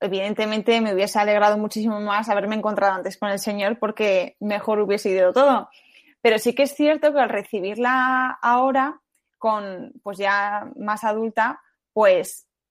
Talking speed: 150 wpm